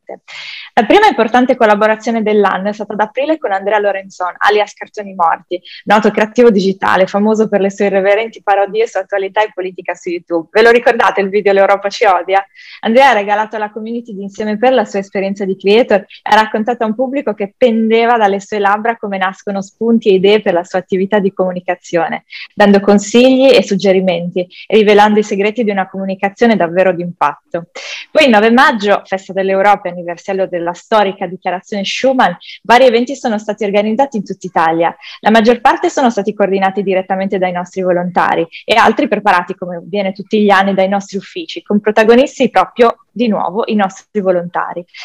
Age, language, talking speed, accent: 20-39, Italian, 180 wpm, native